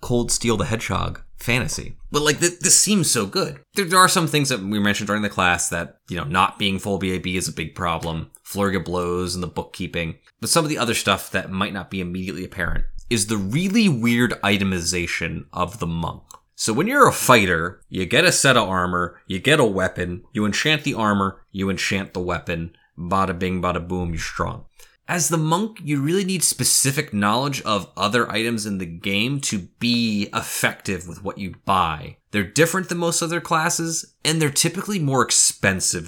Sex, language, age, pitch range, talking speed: male, English, 20-39, 95-135 Hz, 195 wpm